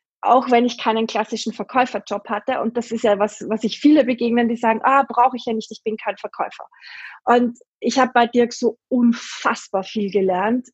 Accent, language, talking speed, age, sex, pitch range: German, German, 200 wpm, 20-39, female, 220-255 Hz